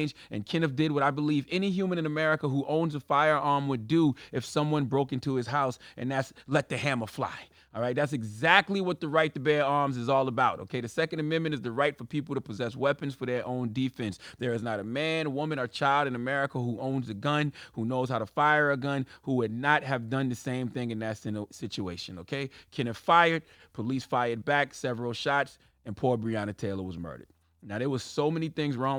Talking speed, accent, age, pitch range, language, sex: 230 wpm, American, 30-49, 120-155 Hz, English, male